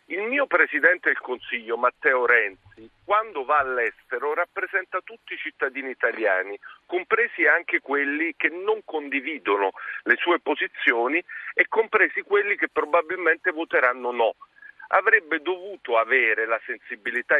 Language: Italian